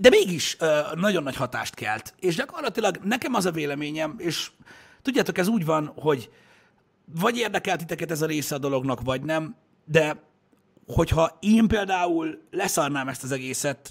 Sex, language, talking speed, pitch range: male, Hungarian, 155 wpm, 125-165 Hz